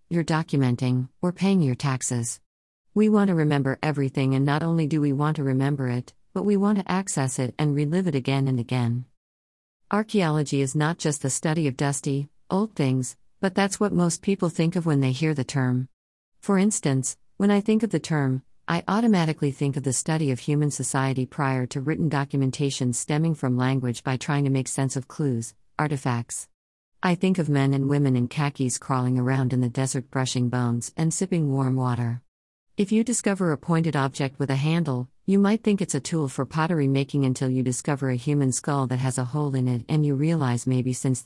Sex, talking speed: female, 205 wpm